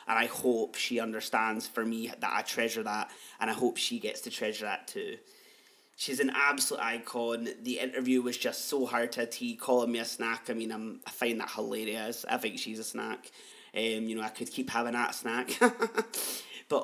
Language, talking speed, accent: English, 210 wpm, British